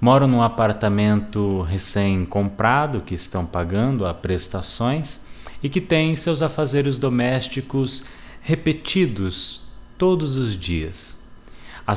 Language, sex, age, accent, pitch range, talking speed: Portuguese, male, 20-39, Brazilian, 100-130 Hz, 100 wpm